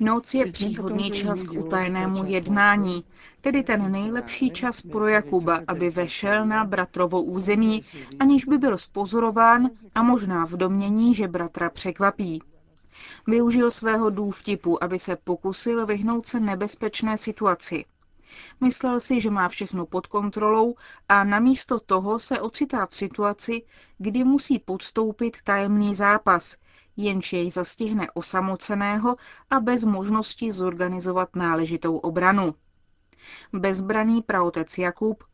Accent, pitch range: native, 185-220 Hz